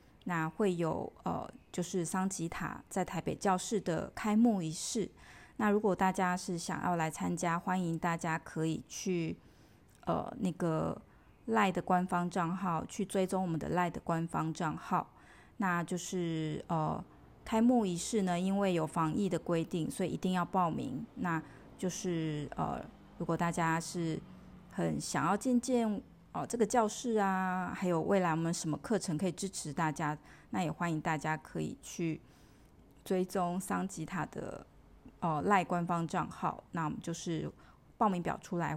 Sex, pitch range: female, 165-195 Hz